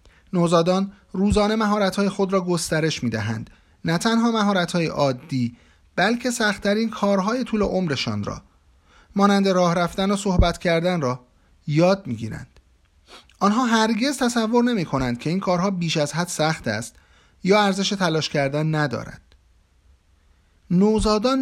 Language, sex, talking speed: Persian, male, 125 wpm